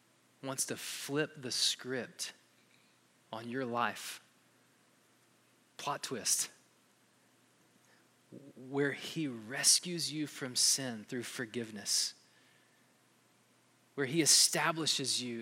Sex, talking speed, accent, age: male, 85 wpm, American, 20-39